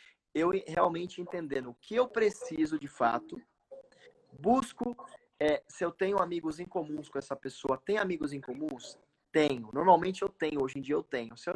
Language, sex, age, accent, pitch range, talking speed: Portuguese, male, 20-39, Brazilian, 140-205 Hz, 180 wpm